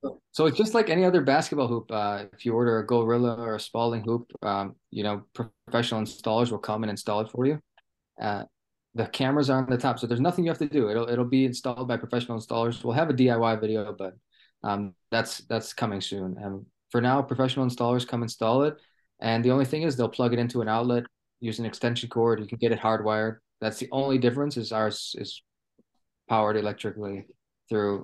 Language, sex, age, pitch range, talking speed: English, male, 20-39, 110-130 Hz, 215 wpm